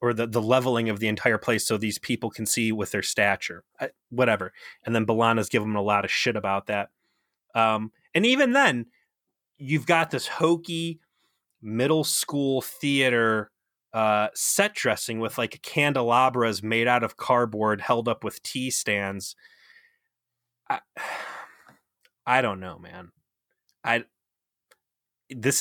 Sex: male